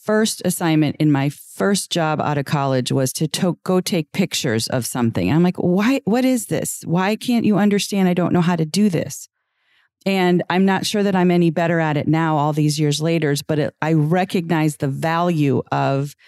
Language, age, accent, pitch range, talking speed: English, 40-59, American, 135-165 Hz, 205 wpm